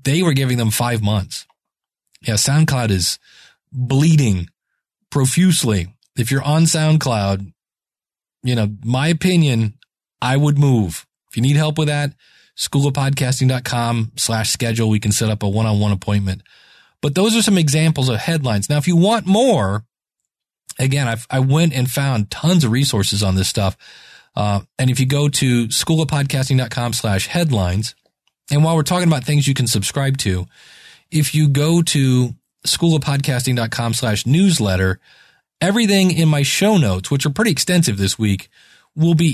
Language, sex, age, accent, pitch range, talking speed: English, male, 30-49, American, 115-155 Hz, 155 wpm